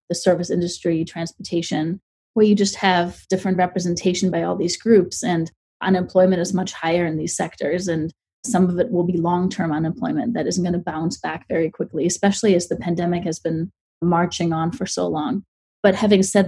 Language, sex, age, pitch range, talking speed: English, female, 30-49, 175-200 Hz, 190 wpm